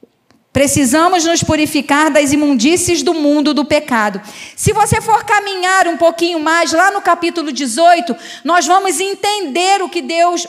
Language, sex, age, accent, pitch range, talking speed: Portuguese, female, 40-59, Brazilian, 300-375 Hz, 150 wpm